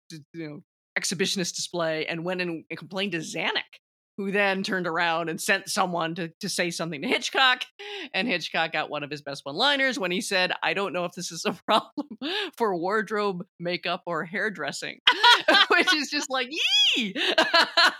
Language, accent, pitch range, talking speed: English, American, 165-225 Hz, 175 wpm